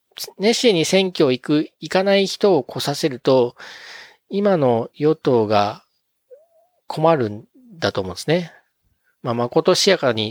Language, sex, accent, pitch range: Japanese, male, native, 115-160 Hz